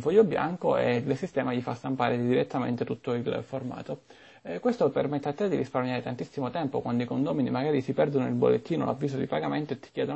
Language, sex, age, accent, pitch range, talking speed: Italian, male, 30-49, native, 125-155 Hz, 205 wpm